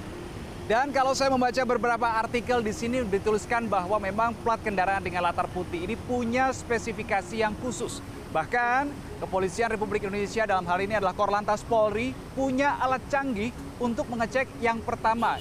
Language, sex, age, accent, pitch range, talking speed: Indonesian, male, 30-49, native, 200-245 Hz, 150 wpm